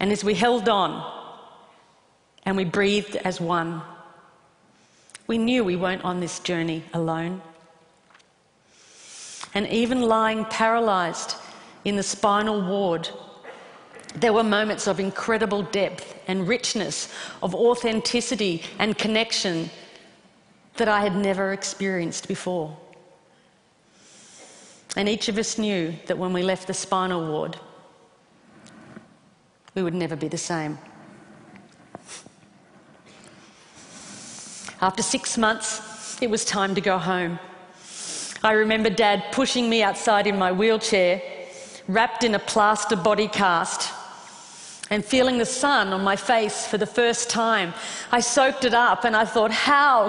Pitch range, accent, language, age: 185-225 Hz, Australian, Chinese, 40-59